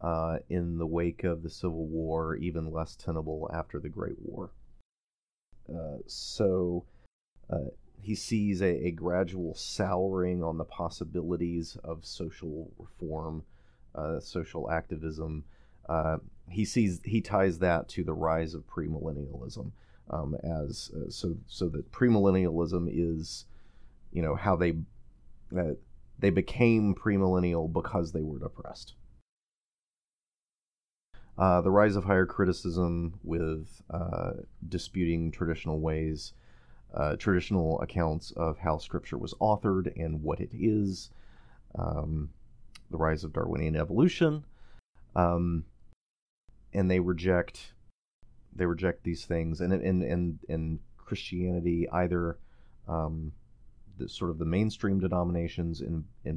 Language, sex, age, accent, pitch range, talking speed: English, male, 30-49, American, 80-95 Hz, 125 wpm